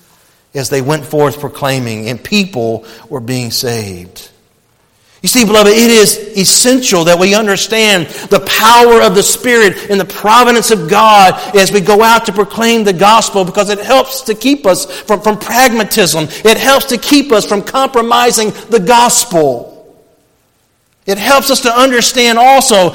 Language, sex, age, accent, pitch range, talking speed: English, male, 50-69, American, 200-250 Hz, 160 wpm